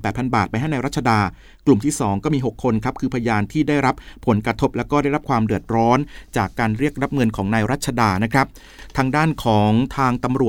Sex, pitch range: male, 115-145 Hz